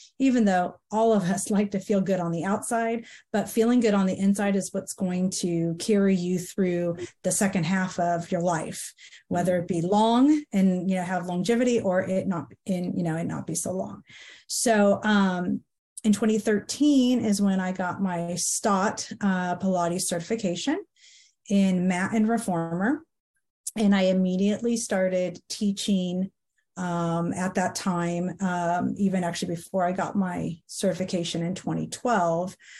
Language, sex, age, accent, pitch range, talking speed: English, female, 30-49, American, 180-210 Hz, 160 wpm